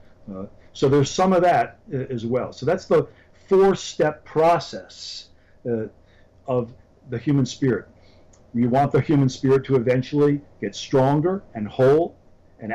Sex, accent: male, American